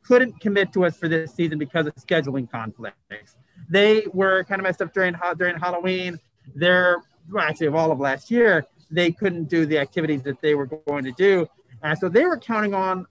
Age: 40-59